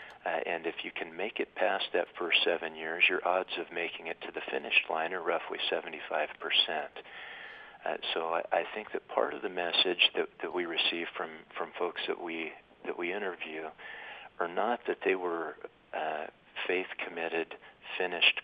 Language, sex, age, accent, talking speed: English, male, 50-69, American, 175 wpm